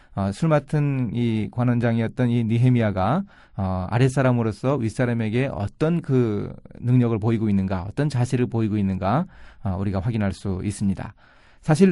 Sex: male